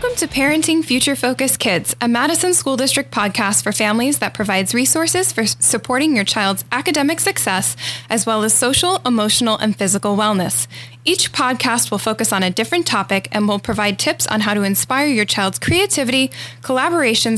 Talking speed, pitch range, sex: 170 wpm, 205-280 Hz, female